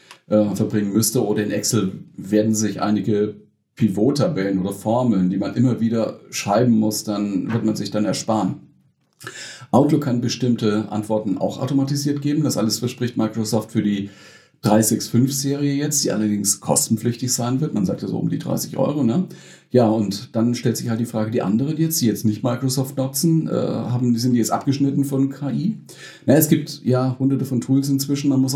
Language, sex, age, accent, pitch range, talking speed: German, male, 40-59, German, 110-135 Hz, 185 wpm